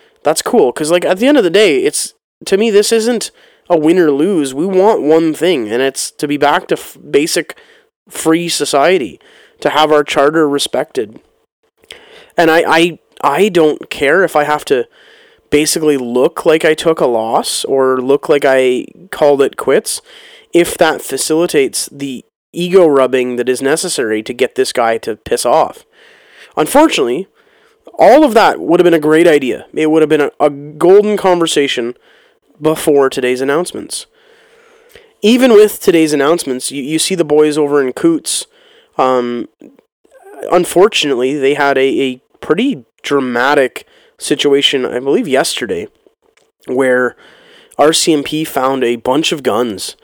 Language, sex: English, male